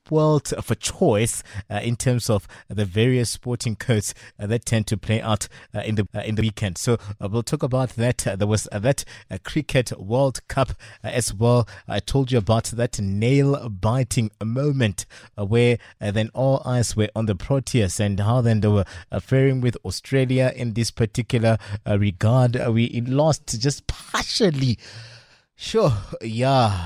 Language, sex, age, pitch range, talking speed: English, male, 20-39, 105-125 Hz, 175 wpm